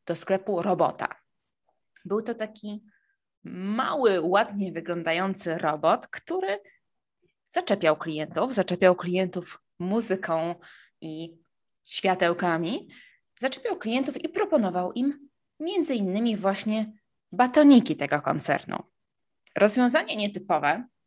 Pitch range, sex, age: 175-225 Hz, female, 20-39